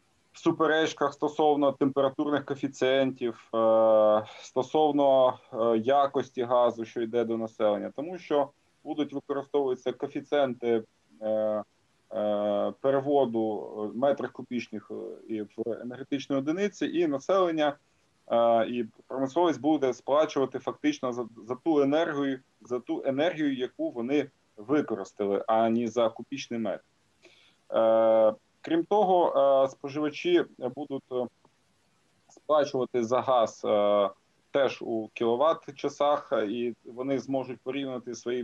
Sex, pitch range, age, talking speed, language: male, 115-145 Hz, 20-39, 90 wpm, Ukrainian